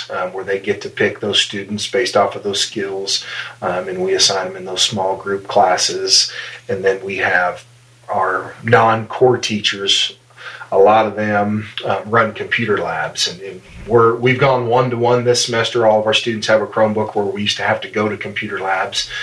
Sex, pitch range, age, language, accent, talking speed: male, 100-125 Hz, 30-49, English, American, 195 wpm